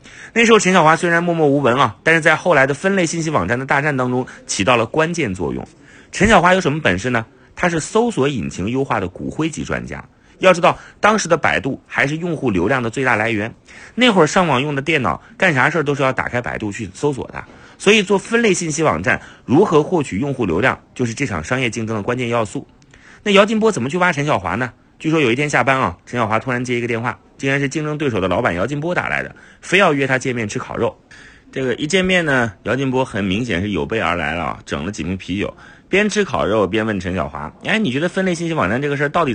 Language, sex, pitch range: Chinese, male, 105-165 Hz